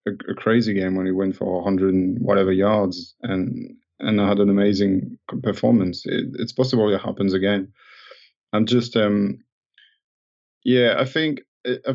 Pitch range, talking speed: 95-110 Hz, 155 wpm